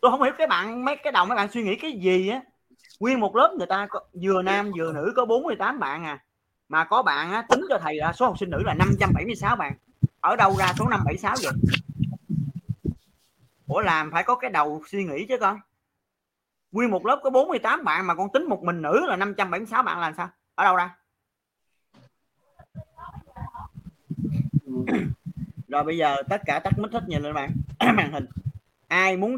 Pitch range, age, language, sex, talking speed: 145-200 Hz, 30-49, Vietnamese, male, 195 wpm